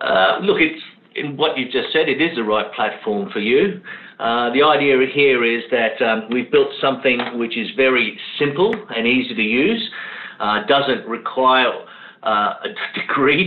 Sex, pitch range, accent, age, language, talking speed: male, 115-170 Hz, Australian, 50-69, English, 175 wpm